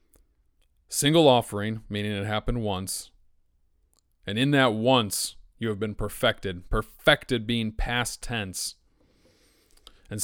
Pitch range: 105-120 Hz